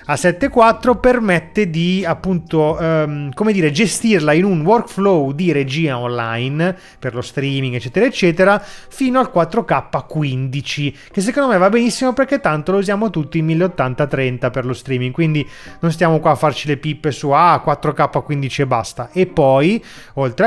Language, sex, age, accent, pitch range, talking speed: Italian, male, 30-49, native, 135-175 Hz, 155 wpm